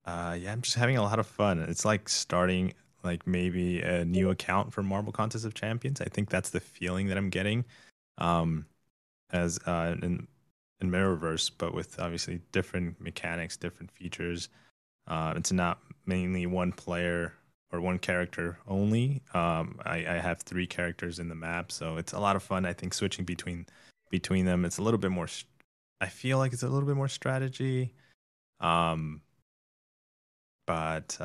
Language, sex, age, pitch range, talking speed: English, male, 20-39, 85-100 Hz, 170 wpm